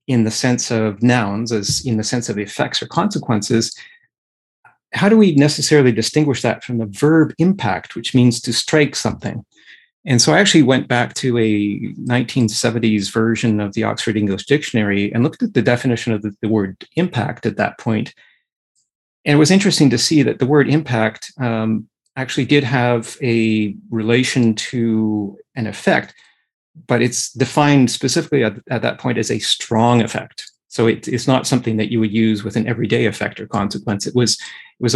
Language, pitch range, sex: English, 110-135 Hz, male